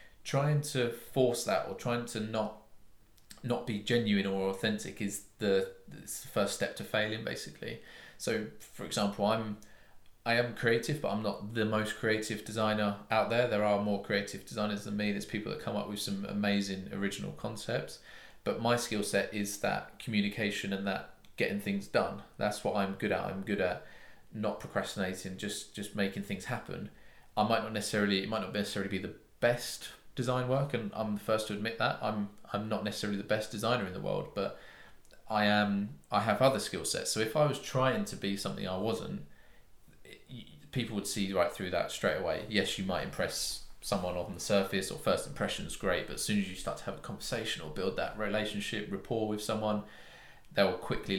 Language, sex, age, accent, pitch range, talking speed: English, male, 20-39, British, 100-110 Hz, 200 wpm